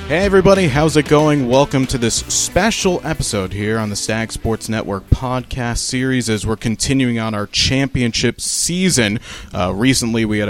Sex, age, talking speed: male, 30-49, 165 wpm